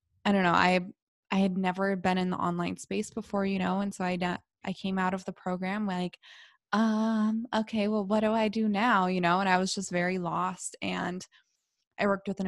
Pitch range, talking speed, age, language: 180-215 Hz, 225 wpm, 20-39, English